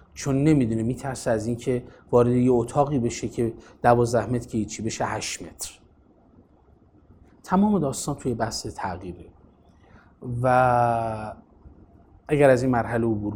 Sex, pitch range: male, 100-135 Hz